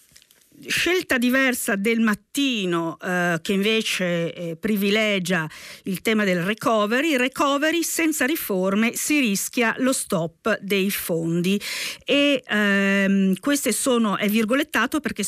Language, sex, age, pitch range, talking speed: Italian, female, 40-59, 175-230 Hz, 115 wpm